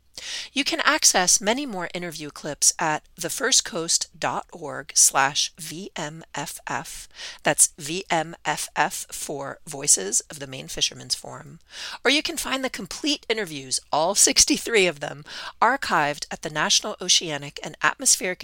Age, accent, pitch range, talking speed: 40-59, American, 150-205 Hz, 120 wpm